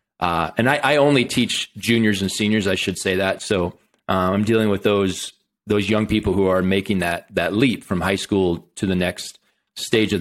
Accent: American